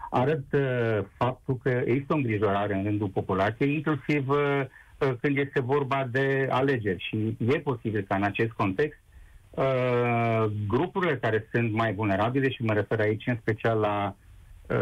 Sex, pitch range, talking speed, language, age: male, 105-135 Hz, 155 wpm, Romanian, 50-69